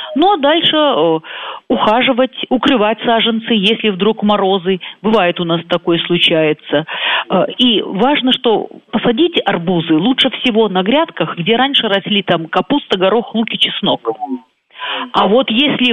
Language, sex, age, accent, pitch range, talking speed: Russian, female, 40-59, native, 180-260 Hz, 140 wpm